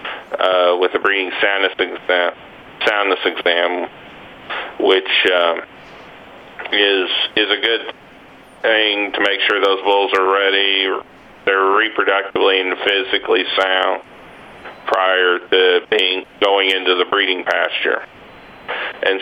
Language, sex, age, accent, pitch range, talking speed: English, male, 40-59, American, 95-100 Hz, 110 wpm